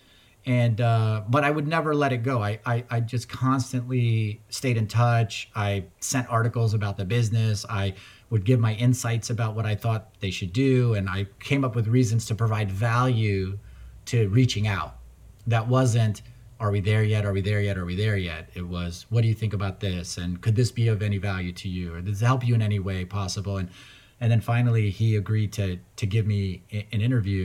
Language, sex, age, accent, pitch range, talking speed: English, male, 30-49, American, 100-115 Hz, 215 wpm